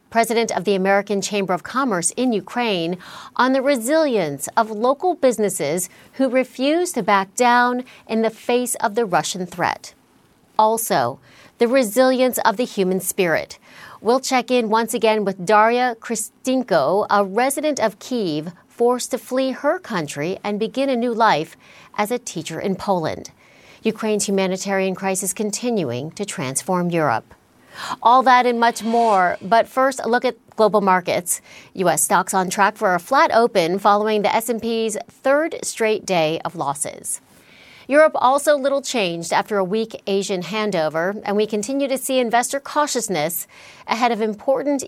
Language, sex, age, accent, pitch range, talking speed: English, female, 40-59, American, 190-245 Hz, 155 wpm